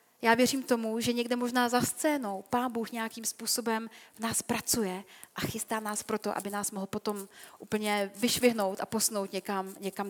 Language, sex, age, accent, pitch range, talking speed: Czech, female, 30-49, native, 210-255 Hz, 170 wpm